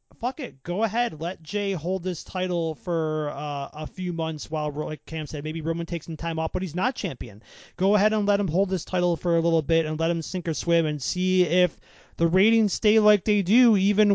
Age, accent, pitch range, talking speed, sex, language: 30-49, American, 155-185 Hz, 240 wpm, male, English